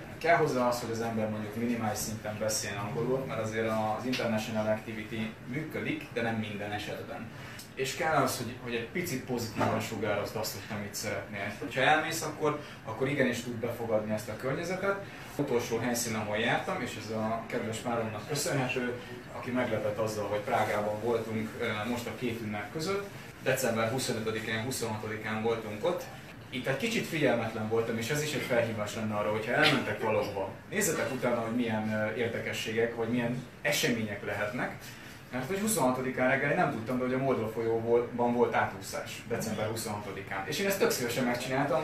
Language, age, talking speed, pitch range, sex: Hungarian, 20-39, 165 wpm, 110-130 Hz, male